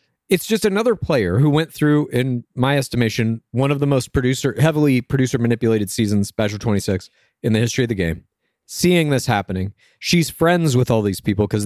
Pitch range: 115-155 Hz